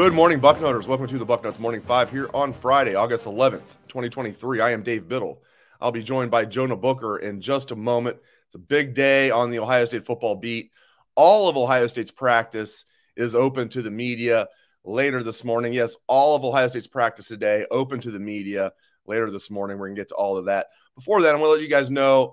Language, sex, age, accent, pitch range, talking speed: English, male, 30-49, American, 110-135 Hz, 225 wpm